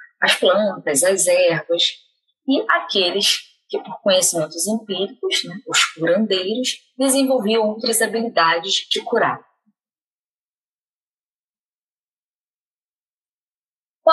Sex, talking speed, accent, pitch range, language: female, 75 wpm, Brazilian, 185-265 Hz, Portuguese